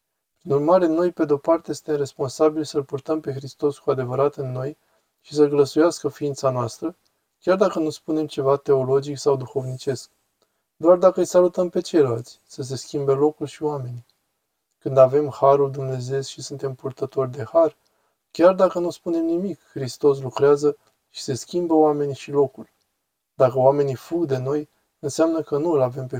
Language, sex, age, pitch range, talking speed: Romanian, male, 20-39, 130-155 Hz, 170 wpm